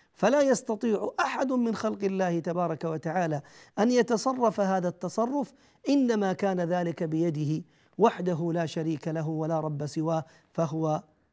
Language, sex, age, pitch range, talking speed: Arabic, male, 40-59, 165-245 Hz, 125 wpm